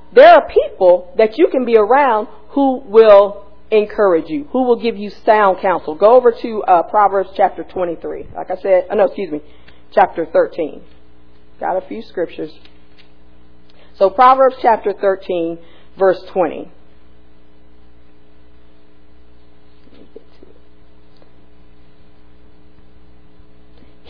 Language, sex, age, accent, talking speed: English, female, 40-59, American, 105 wpm